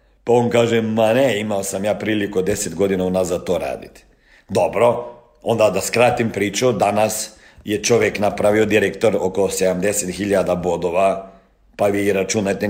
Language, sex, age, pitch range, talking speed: Croatian, male, 50-69, 105-135 Hz, 145 wpm